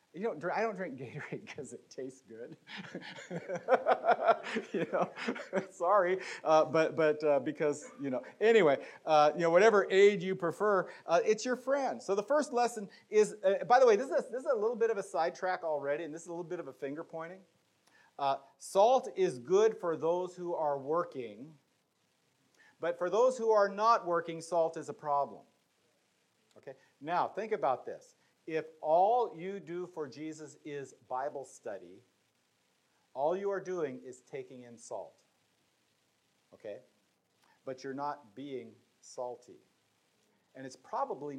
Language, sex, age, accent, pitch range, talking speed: English, male, 40-59, American, 140-195 Hz, 165 wpm